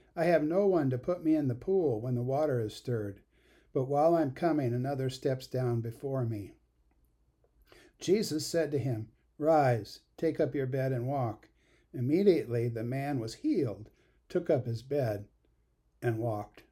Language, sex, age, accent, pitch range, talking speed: English, male, 60-79, American, 120-155 Hz, 165 wpm